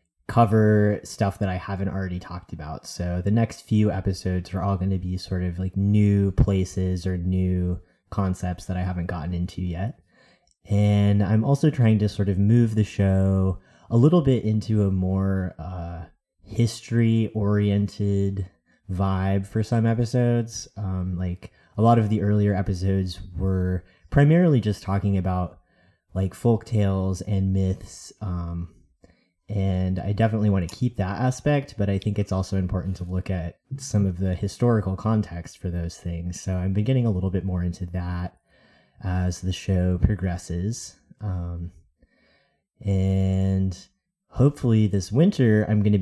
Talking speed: 155 wpm